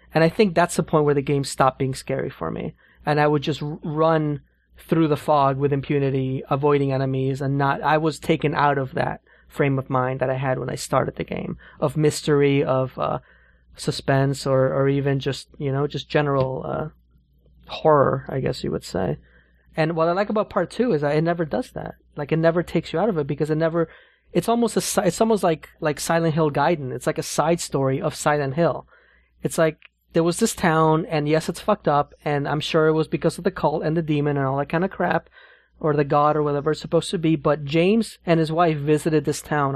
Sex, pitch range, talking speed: male, 140-165 Hz, 230 wpm